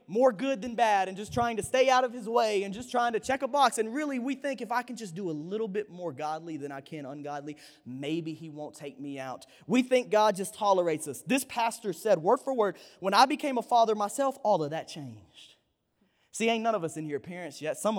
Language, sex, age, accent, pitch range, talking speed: English, male, 20-39, American, 195-290 Hz, 255 wpm